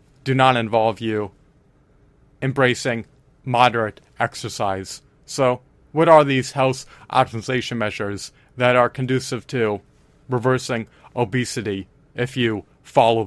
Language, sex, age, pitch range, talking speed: English, male, 30-49, 120-140 Hz, 105 wpm